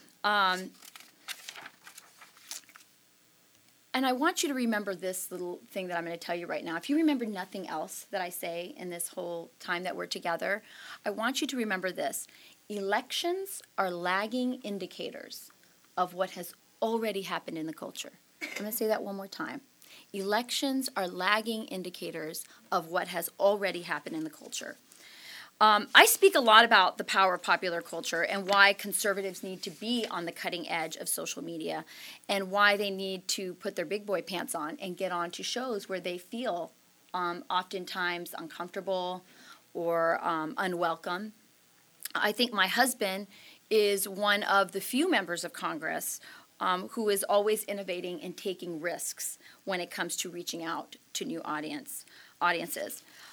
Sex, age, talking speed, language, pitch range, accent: female, 30-49, 170 wpm, English, 180-215 Hz, American